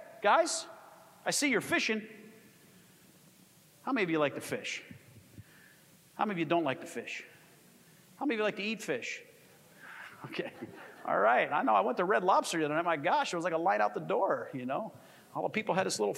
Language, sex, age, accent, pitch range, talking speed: English, male, 40-59, American, 185-260 Hz, 220 wpm